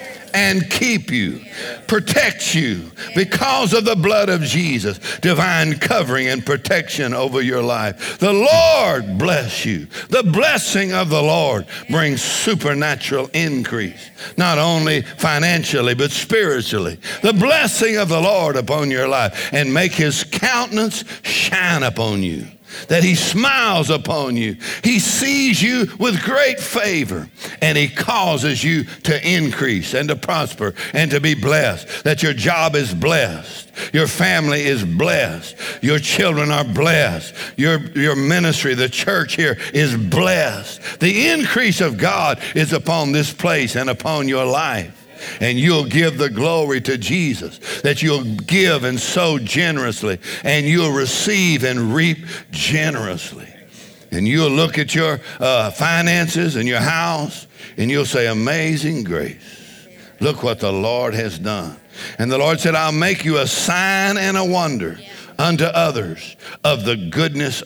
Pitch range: 135-180 Hz